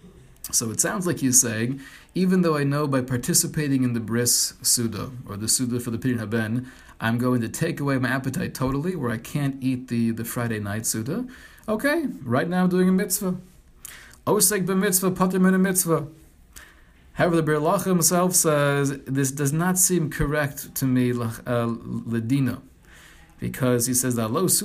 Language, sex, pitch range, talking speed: English, male, 125-170 Hz, 155 wpm